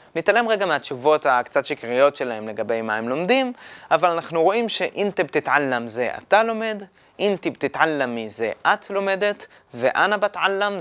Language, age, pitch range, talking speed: Hebrew, 20-39, 135-205 Hz, 140 wpm